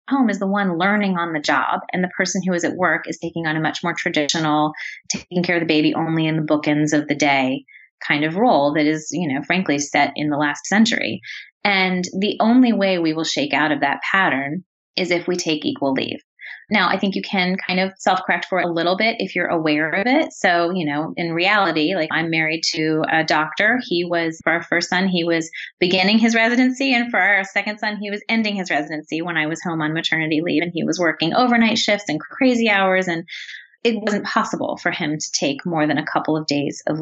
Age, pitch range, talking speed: 30-49, 155-200 Hz, 235 wpm